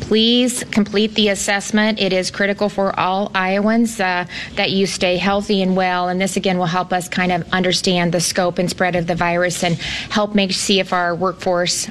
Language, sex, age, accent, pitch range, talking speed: English, female, 30-49, American, 170-195 Hz, 200 wpm